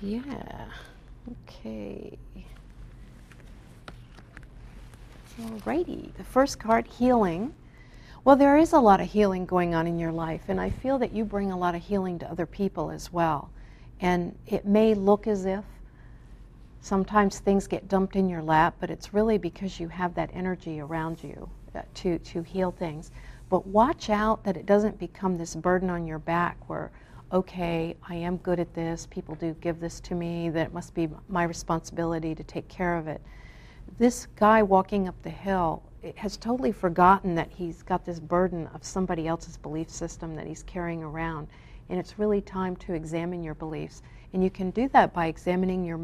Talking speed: 175 wpm